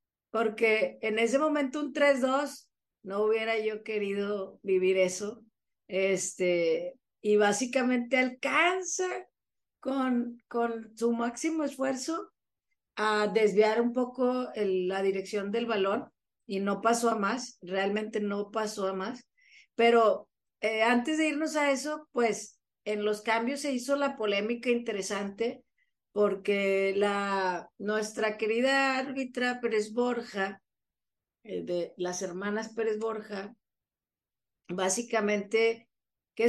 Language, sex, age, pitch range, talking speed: Spanish, female, 40-59, 195-245 Hz, 110 wpm